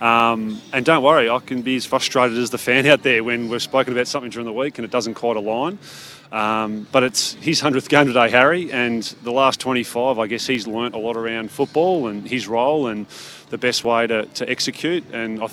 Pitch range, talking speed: 115-130 Hz, 230 wpm